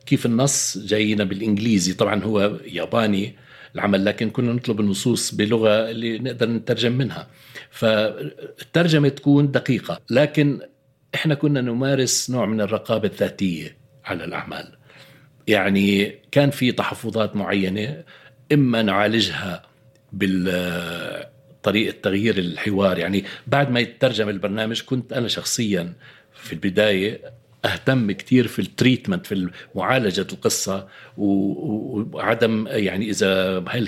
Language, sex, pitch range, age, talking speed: Arabic, male, 100-130 Hz, 60-79, 110 wpm